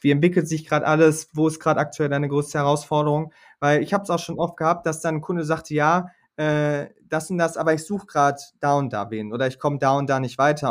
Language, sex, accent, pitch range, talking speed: German, male, German, 145-175 Hz, 260 wpm